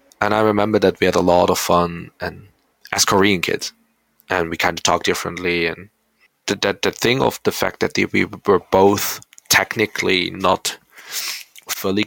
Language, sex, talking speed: English, male, 180 wpm